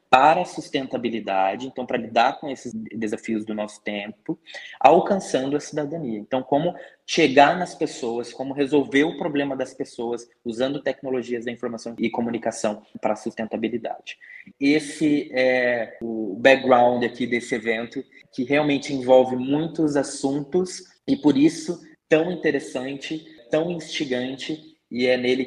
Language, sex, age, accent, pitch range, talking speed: Portuguese, male, 20-39, Brazilian, 115-135 Hz, 130 wpm